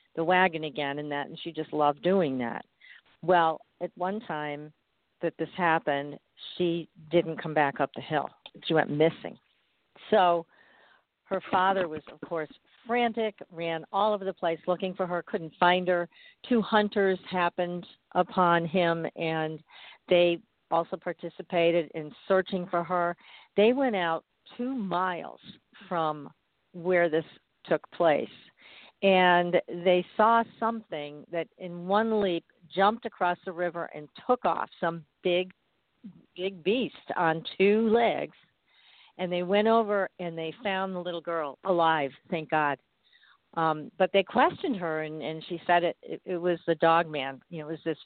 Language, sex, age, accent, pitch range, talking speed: English, female, 50-69, American, 160-185 Hz, 155 wpm